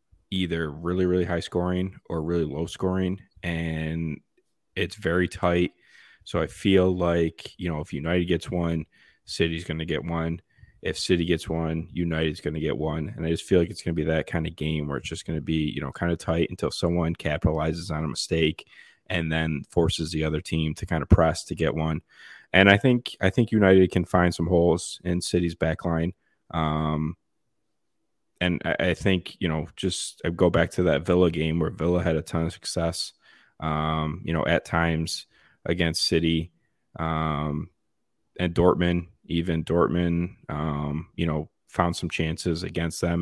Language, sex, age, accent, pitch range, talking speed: English, male, 20-39, American, 80-90 Hz, 185 wpm